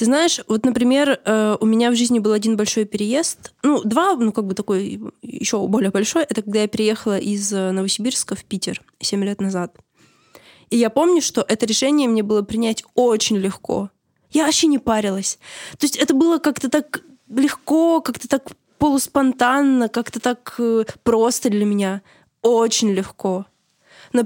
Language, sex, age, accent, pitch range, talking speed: Russian, female, 20-39, native, 210-260 Hz, 160 wpm